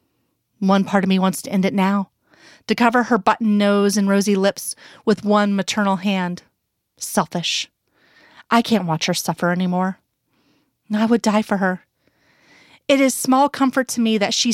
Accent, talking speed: American, 170 wpm